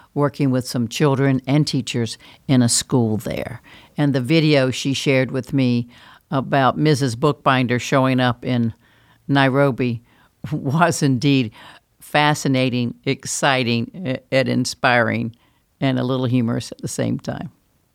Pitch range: 125-155 Hz